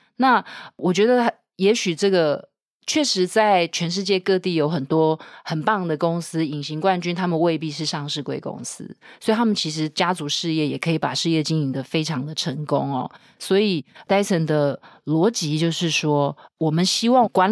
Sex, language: female, Chinese